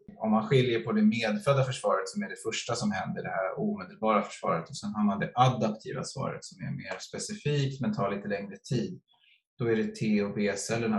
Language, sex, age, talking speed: Swedish, male, 20-39, 215 wpm